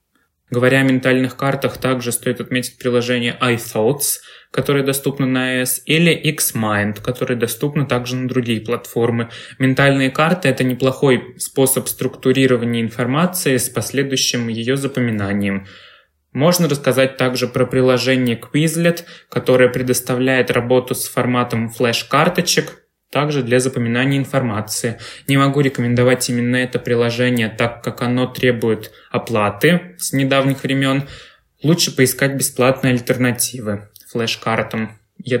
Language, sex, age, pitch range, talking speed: Russian, male, 20-39, 120-135 Hz, 115 wpm